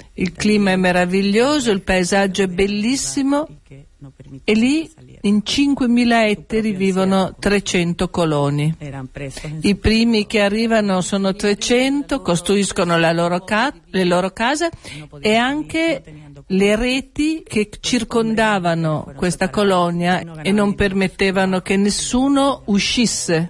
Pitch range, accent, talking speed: 180-225 Hz, native, 110 wpm